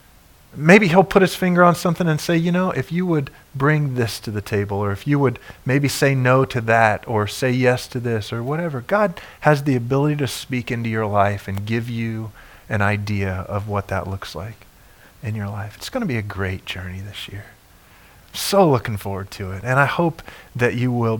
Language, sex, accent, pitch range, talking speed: English, male, American, 105-150 Hz, 220 wpm